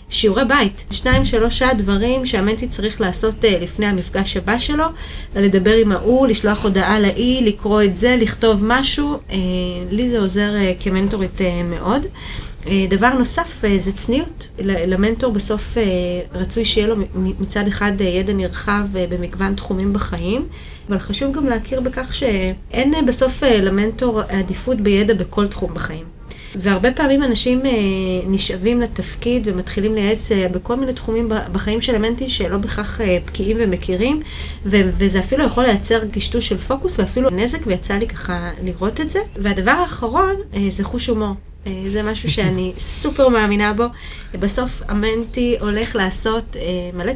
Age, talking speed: 30-49, 135 wpm